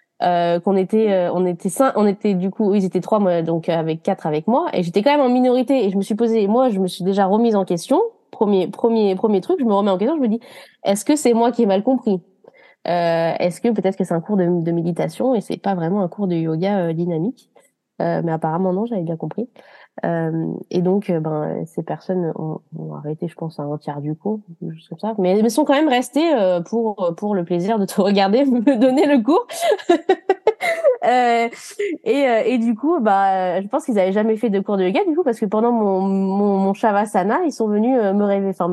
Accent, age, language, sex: French, 20-39, French, female